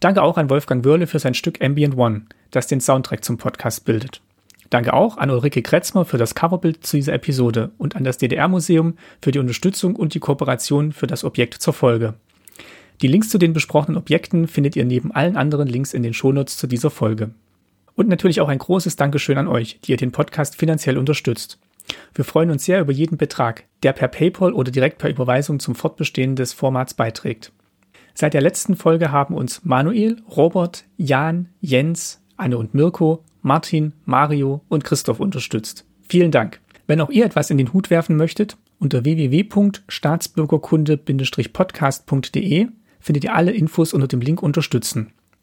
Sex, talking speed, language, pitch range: male, 175 wpm, German, 130-165 Hz